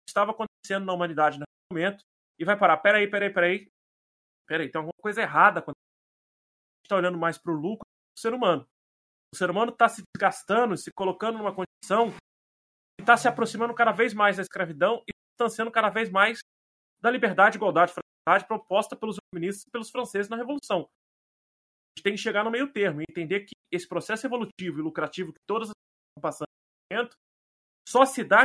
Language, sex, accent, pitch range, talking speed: Portuguese, male, Brazilian, 170-225 Hz, 195 wpm